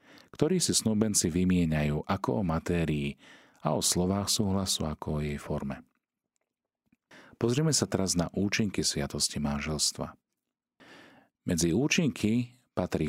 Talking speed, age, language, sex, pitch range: 115 wpm, 40-59, Slovak, male, 75-105 Hz